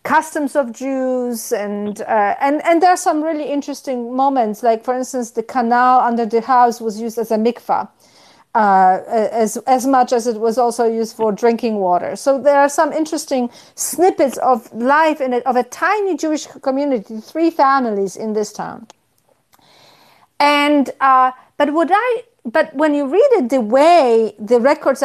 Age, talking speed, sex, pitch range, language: 40-59, 170 wpm, female, 225-285 Hz, English